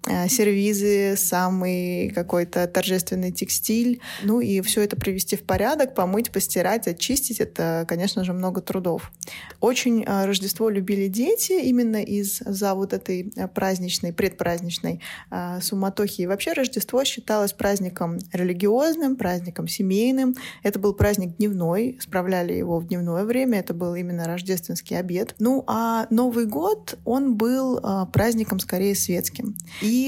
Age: 20-39